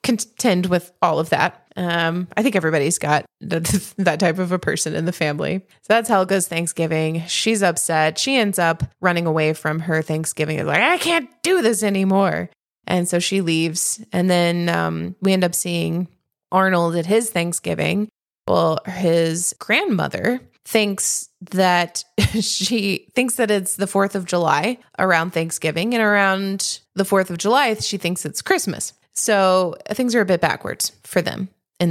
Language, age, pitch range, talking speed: English, 20-39, 170-210 Hz, 170 wpm